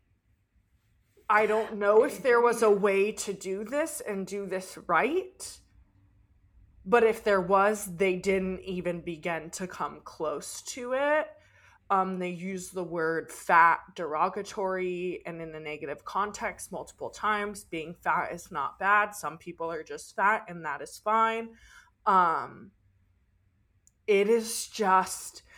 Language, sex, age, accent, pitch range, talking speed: English, female, 20-39, American, 170-215 Hz, 140 wpm